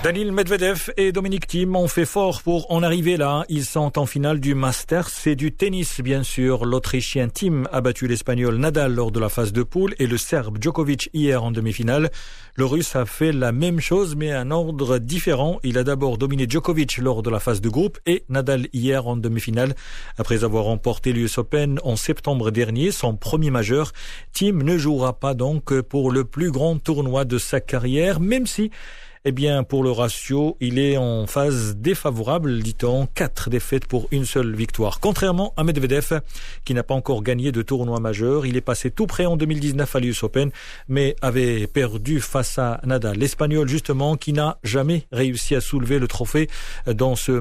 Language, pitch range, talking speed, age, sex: Arabic, 125-155 Hz, 190 wpm, 40-59, male